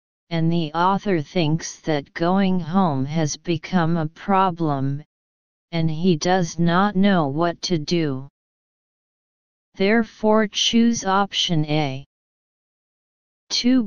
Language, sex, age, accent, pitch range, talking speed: English, female, 40-59, American, 160-195 Hz, 105 wpm